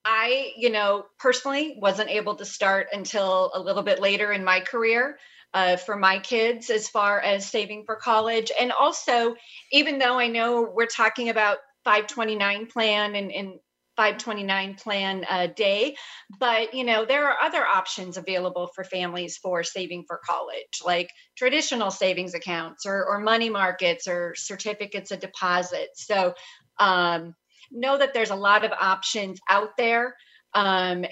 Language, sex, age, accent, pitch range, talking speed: English, female, 40-59, American, 190-230 Hz, 155 wpm